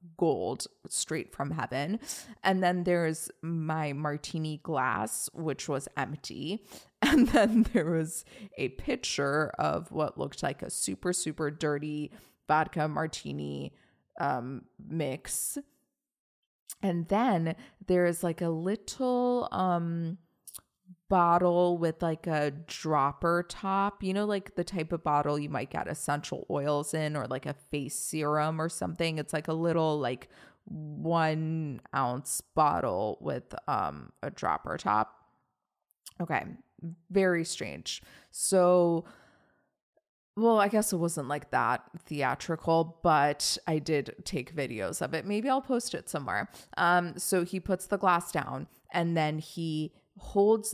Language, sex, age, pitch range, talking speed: English, female, 20-39, 150-190 Hz, 135 wpm